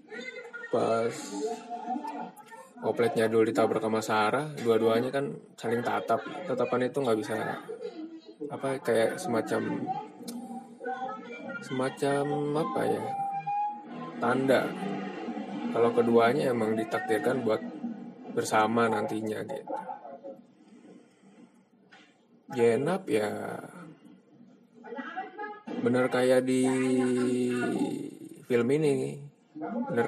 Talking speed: 75 wpm